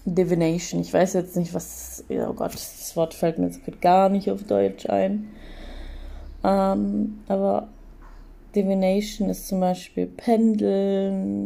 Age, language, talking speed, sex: 20-39, German, 130 wpm, female